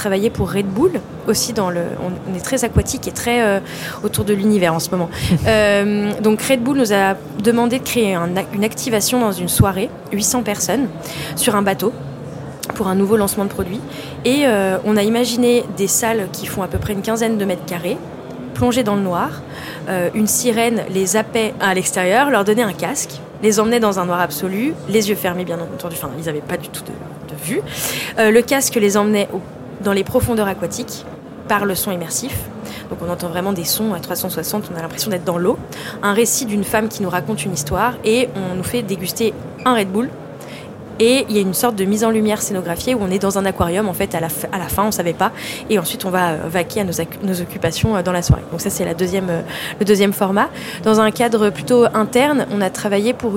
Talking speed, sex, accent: 220 wpm, female, French